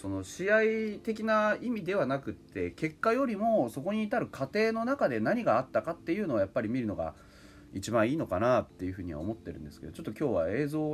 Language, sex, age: Japanese, male, 30-49